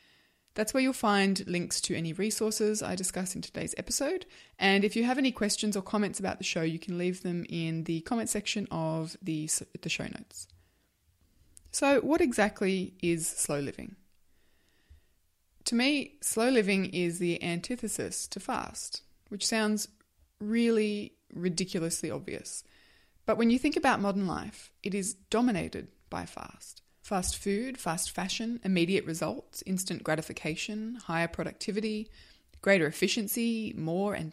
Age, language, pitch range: 20-39, English, 160-215 Hz